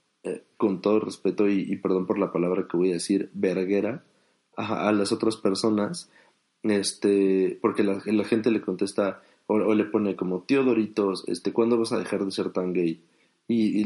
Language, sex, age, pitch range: Spanish, male, 30-49, 95-110 Hz